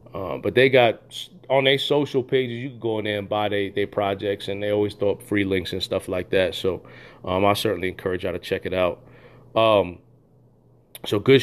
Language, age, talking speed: English, 30-49, 220 wpm